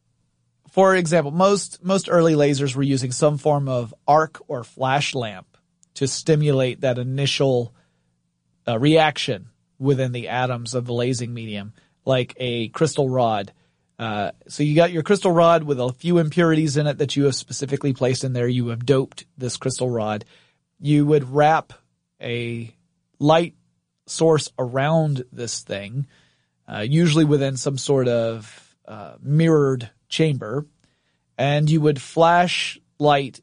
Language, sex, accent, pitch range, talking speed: English, male, American, 125-160 Hz, 145 wpm